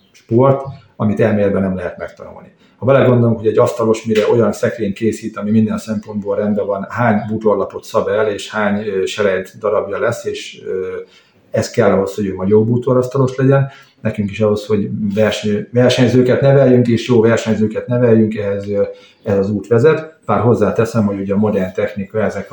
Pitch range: 100-120 Hz